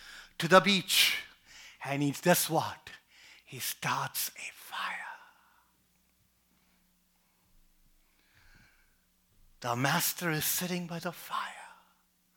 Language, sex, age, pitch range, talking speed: English, male, 50-69, 130-205 Hz, 85 wpm